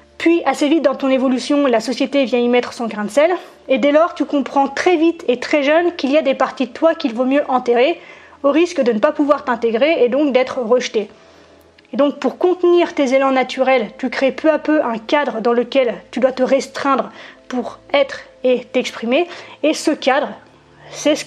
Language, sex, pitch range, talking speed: French, female, 245-300 Hz, 215 wpm